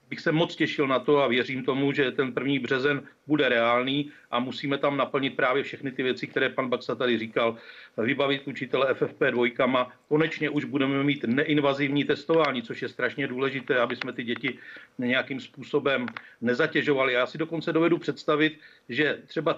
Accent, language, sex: native, Czech, male